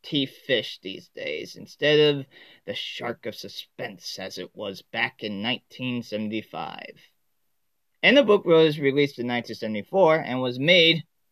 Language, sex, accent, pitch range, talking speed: English, male, American, 130-195 Hz, 140 wpm